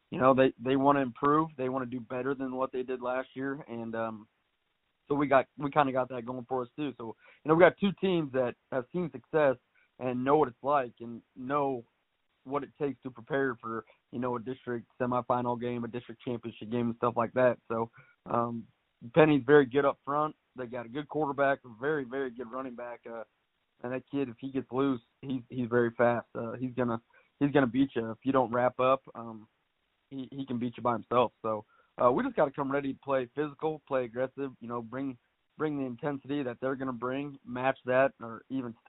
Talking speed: 220 wpm